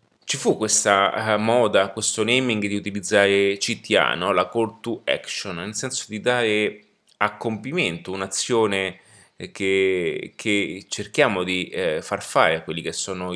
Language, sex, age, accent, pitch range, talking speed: Italian, male, 30-49, native, 100-125 Hz, 140 wpm